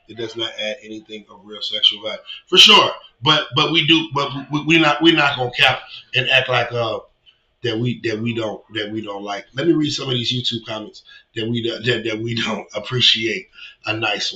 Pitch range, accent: 110-160 Hz, American